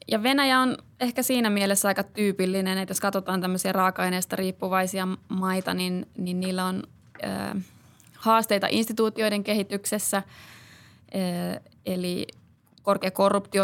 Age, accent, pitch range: 20-39, native, 180-200 Hz